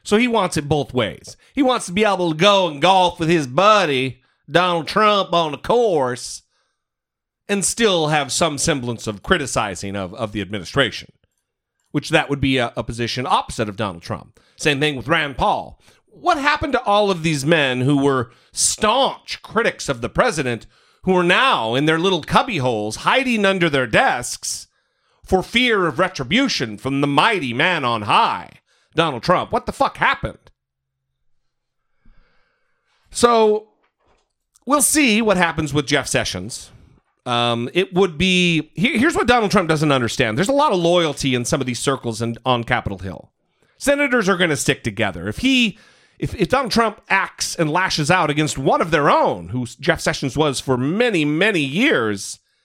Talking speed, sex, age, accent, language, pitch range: 175 wpm, male, 40-59, American, English, 125-195 Hz